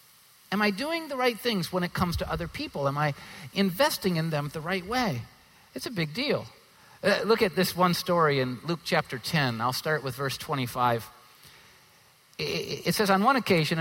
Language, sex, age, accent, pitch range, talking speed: English, male, 50-69, American, 140-200 Hz, 190 wpm